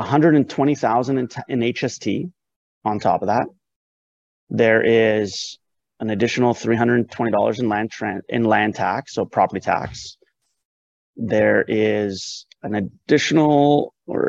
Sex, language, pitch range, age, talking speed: male, English, 105-125 Hz, 30-49, 145 wpm